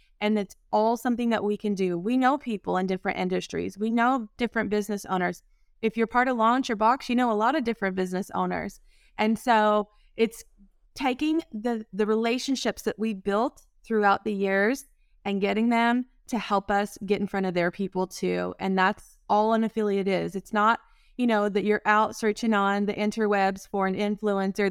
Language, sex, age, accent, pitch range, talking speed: English, female, 20-39, American, 200-240 Hz, 195 wpm